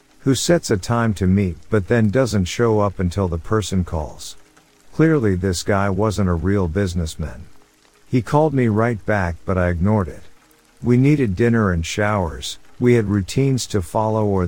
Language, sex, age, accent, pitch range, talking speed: English, male, 50-69, American, 90-115 Hz, 175 wpm